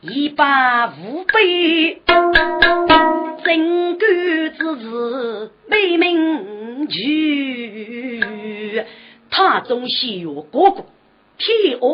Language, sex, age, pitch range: Chinese, female, 40-59, 210-340 Hz